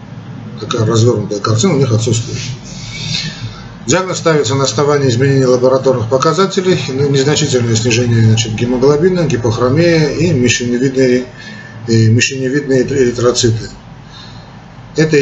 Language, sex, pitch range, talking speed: Russian, male, 115-145 Hz, 85 wpm